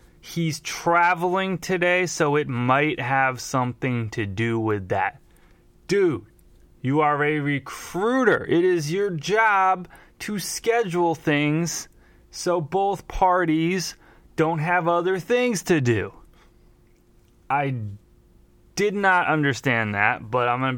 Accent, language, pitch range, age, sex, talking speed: American, English, 110-155 Hz, 20-39, male, 120 wpm